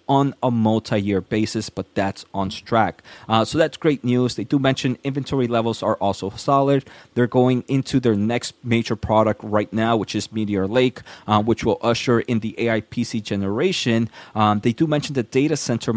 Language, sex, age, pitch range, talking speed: English, male, 30-49, 105-125 Hz, 185 wpm